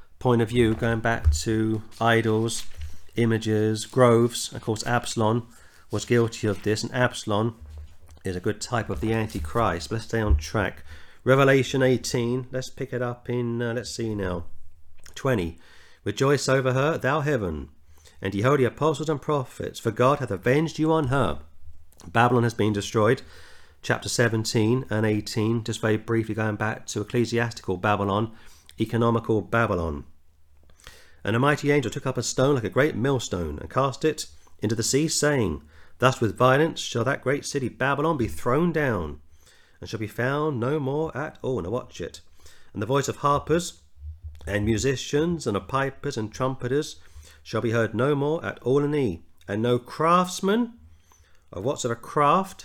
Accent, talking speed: British, 170 wpm